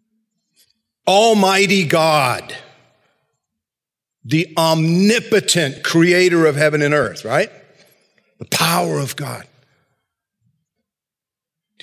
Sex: male